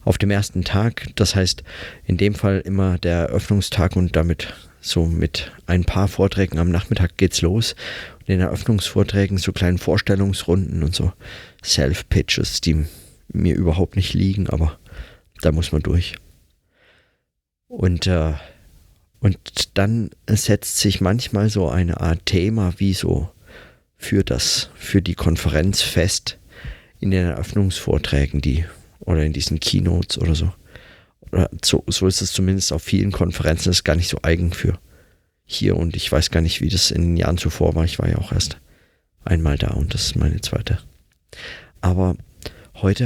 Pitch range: 80-100 Hz